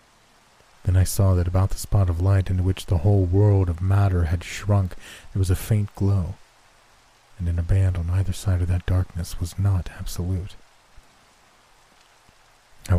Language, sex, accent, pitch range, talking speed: English, male, American, 90-110 Hz, 170 wpm